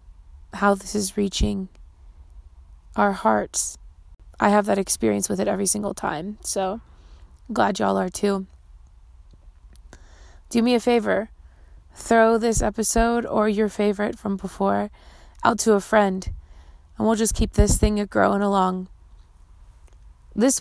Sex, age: female, 20-39